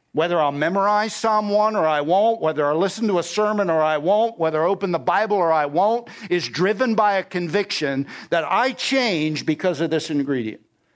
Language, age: English, 60-79